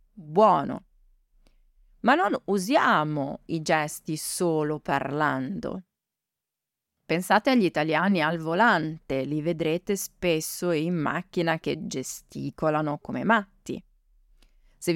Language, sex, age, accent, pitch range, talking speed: Italian, female, 30-49, native, 145-175 Hz, 90 wpm